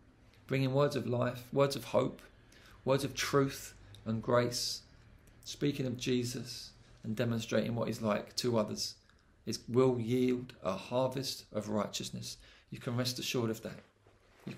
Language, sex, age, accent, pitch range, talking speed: English, male, 40-59, British, 110-130 Hz, 150 wpm